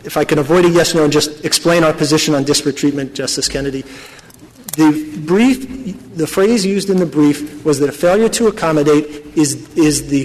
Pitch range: 145-185 Hz